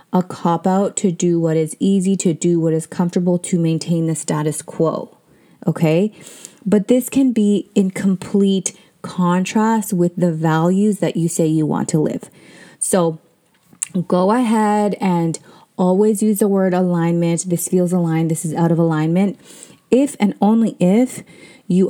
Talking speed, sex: 160 wpm, female